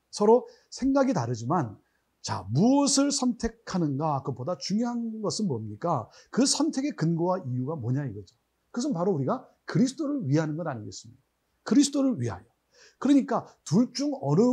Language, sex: Korean, male